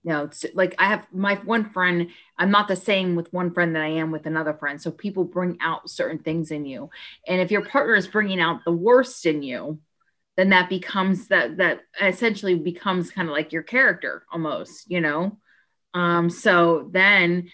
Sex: female